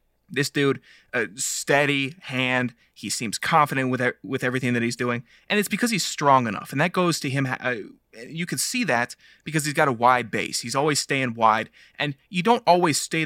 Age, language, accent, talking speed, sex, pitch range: 20-39, English, American, 215 wpm, male, 120-150 Hz